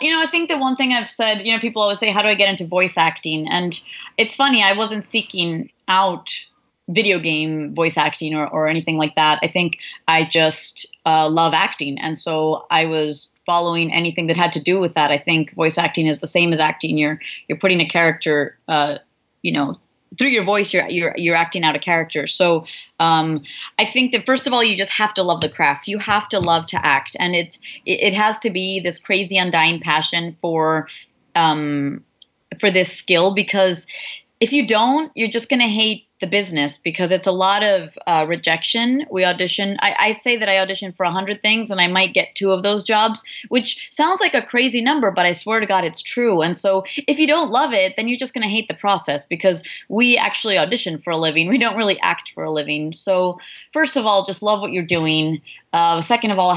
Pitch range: 165-220 Hz